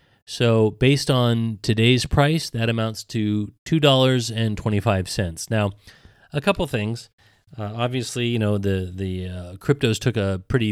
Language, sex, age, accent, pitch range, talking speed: English, male, 30-49, American, 95-120 Hz, 135 wpm